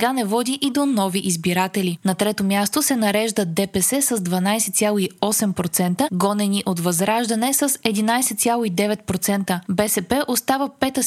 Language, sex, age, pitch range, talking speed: Bulgarian, female, 20-39, 195-245 Hz, 125 wpm